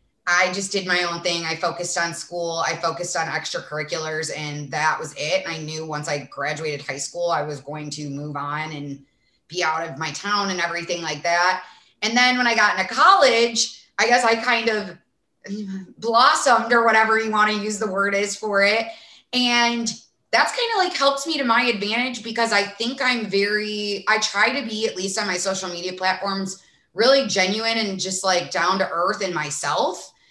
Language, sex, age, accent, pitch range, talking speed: English, female, 20-39, American, 175-225 Hz, 200 wpm